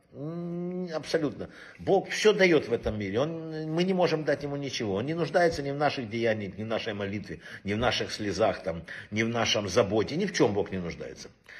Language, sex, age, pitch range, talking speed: Russian, male, 60-79, 115-180 Hz, 205 wpm